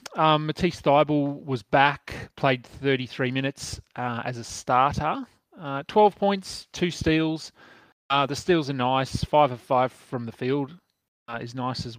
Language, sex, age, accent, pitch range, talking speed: English, male, 30-49, Australian, 115-135 Hz, 160 wpm